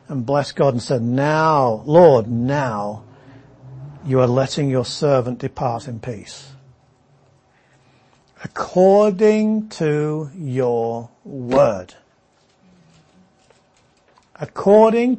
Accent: British